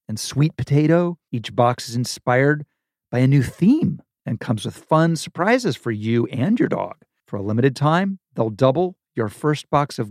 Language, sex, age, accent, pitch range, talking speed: English, male, 40-59, American, 120-175 Hz, 185 wpm